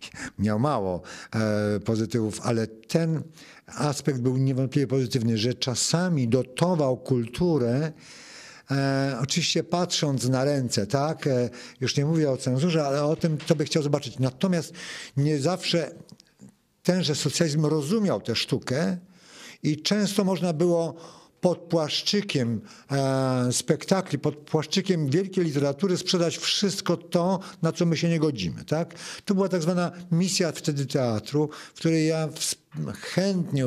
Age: 50-69